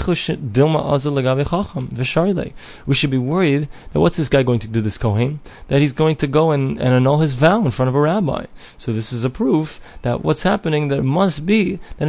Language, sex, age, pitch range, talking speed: English, male, 20-39, 110-150 Hz, 200 wpm